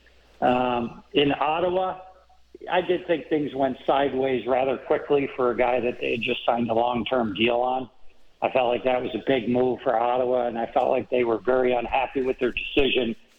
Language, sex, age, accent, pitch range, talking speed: English, male, 60-79, American, 120-140 Hz, 195 wpm